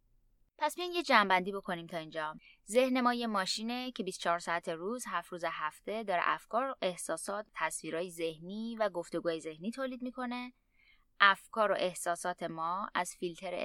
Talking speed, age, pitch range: 155 wpm, 20-39, 170-235 Hz